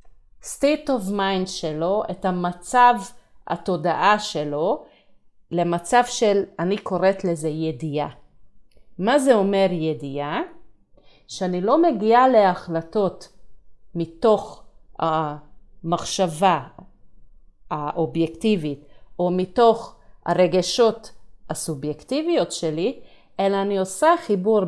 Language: Hebrew